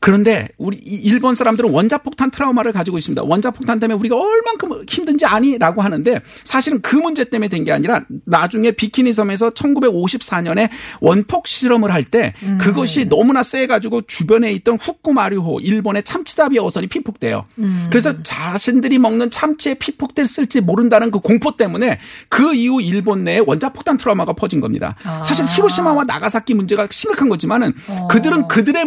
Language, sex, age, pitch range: Korean, male, 40-59, 185-265 Hz